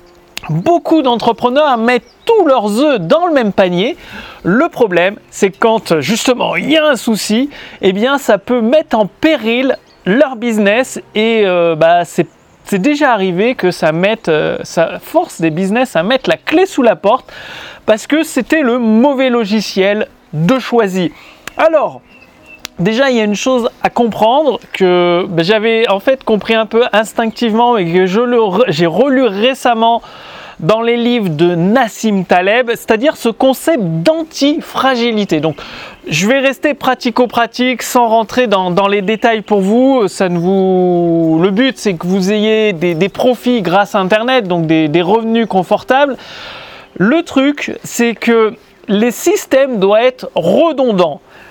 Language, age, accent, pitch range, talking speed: French, 30-49, French, 195-260 Hz, 155 wpm